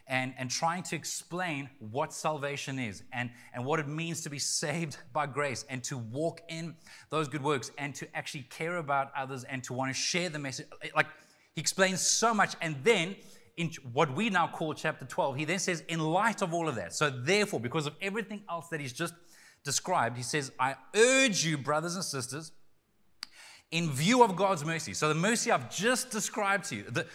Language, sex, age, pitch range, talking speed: English, male, 30-49, 145-185 Hz, 205 wpm